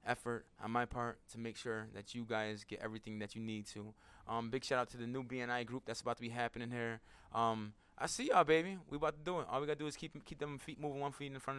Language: English